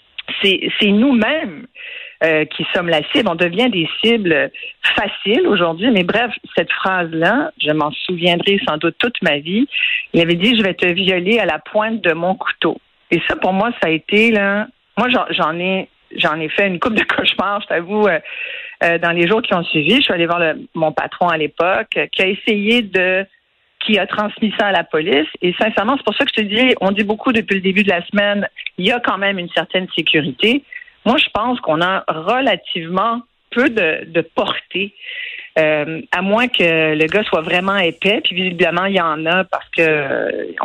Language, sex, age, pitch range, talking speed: French, female, 50-69, 170-235 Hz, 215 wpm